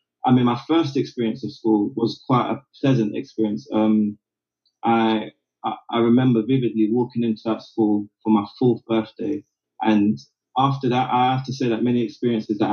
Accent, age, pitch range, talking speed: British, 20-39, 110-130 Hz, 170 wpm